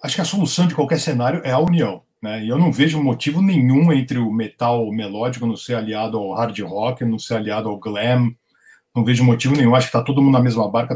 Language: Portuguese